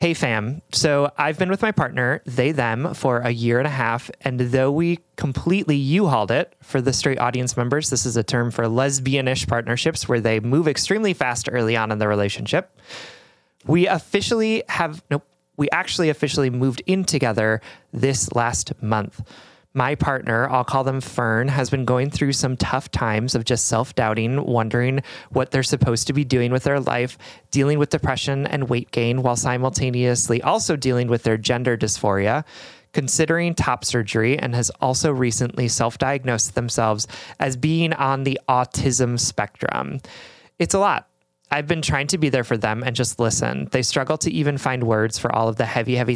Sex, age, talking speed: male, 30-49, 180 wpm